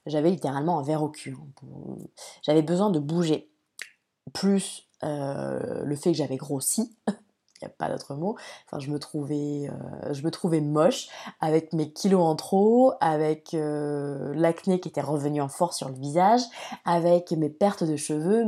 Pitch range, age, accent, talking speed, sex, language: 150-200 Hz, 20-39, French, 170 wpm, female, French